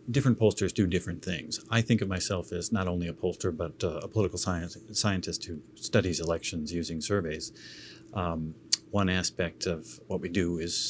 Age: 40-59